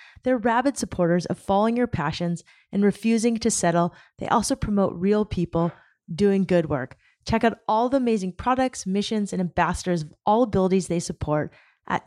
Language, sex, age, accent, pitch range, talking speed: English, female, 30-49, American, 180-230 Hz, 170 wpm